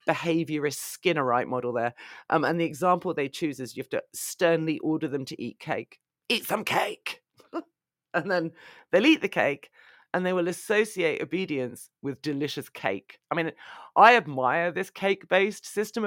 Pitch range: 140-185 Hz